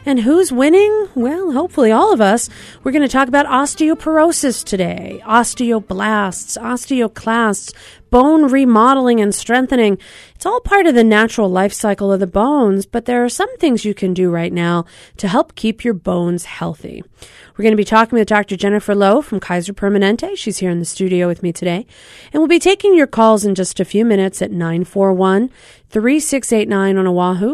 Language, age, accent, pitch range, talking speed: English, 40-59, American, 195-275 Hz, 180 wpm